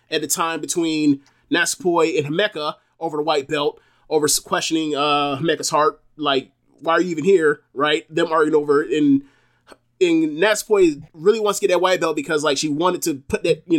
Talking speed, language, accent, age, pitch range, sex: 195 wpm, English, American, 30-49, 155-205 Hz, male